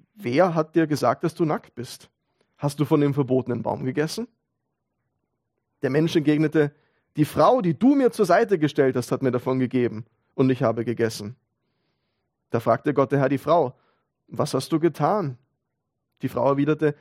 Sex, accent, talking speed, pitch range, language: male, German, 175 wpm, 125-155 Hz, German